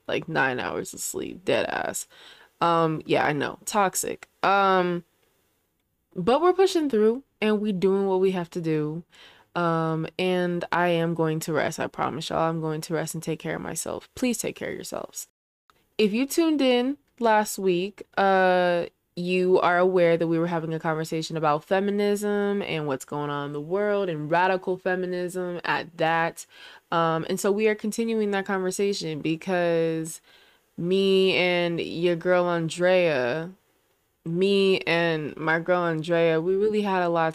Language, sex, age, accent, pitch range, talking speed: English, female, 20-39, American, 160-195 Hz, 165 wpm